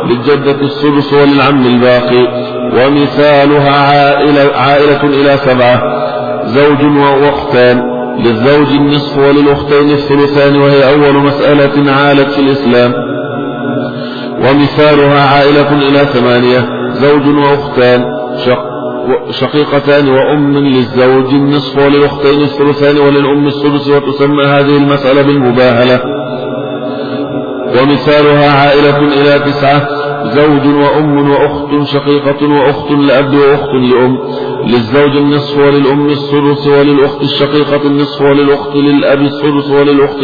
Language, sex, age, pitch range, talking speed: Arabic, male, 50-69, 140-145 Hz, 90 wpm